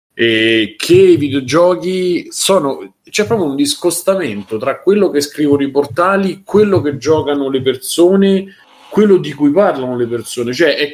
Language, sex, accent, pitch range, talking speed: Italian, male, native, 105-165 Hz, 160 wpm